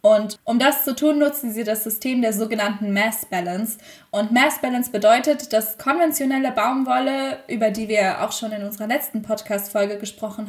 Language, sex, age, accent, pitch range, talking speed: German, female, 10-29, German, 210-265 Hz, 170 wpm